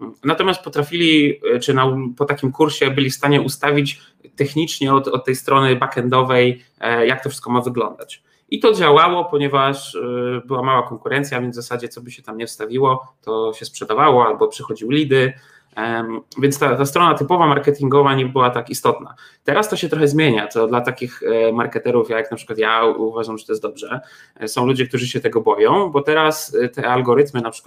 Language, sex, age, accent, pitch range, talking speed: Polish, male, 20-39, native, 120-145 Hz, 180 wpm